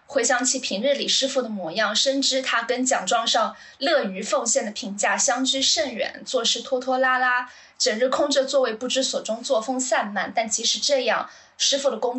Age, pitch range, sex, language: 10-29, 220-270 Hz, female, Chinese